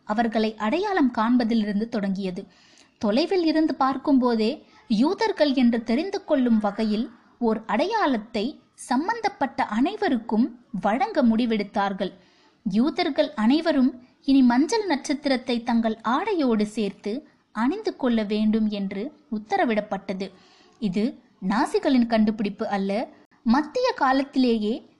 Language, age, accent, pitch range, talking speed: Tamil, 20-39, native, 215-290 Hz, 80 wpm